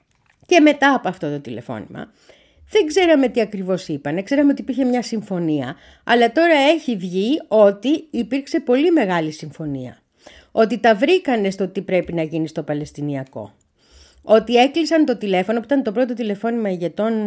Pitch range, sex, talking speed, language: 170-270 Hz, female, 155 wpm, Greek